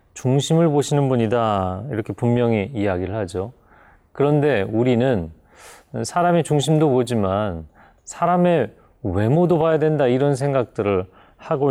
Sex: male